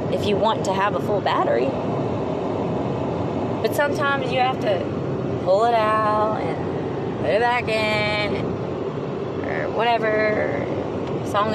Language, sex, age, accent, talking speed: English, female, 20-39, American, 130 wpm